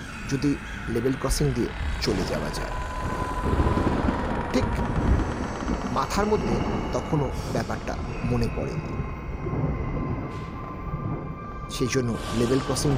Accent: native